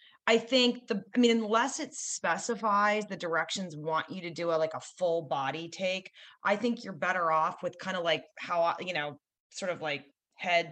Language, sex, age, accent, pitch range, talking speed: English, female, 30-49, American, 170-225 Hz, 200 wpm